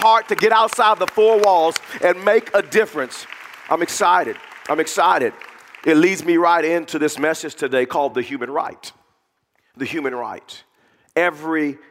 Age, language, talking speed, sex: 40-59, English, 155 wpm, male